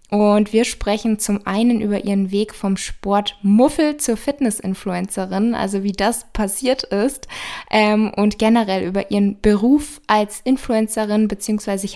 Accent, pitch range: German, 205-240 Hz